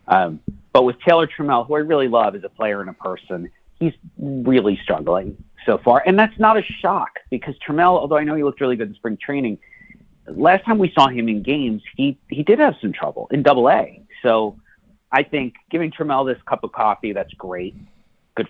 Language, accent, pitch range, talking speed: English, American, 100-140 Hz, 210 wpm